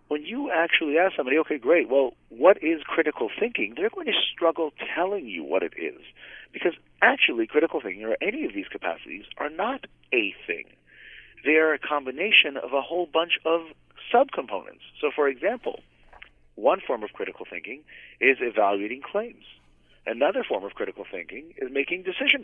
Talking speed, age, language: 170 wpm, 40-59, English